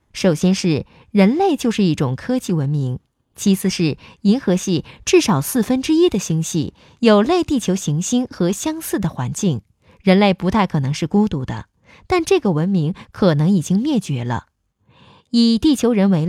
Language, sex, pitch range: Chinese, female, 150-220 Hz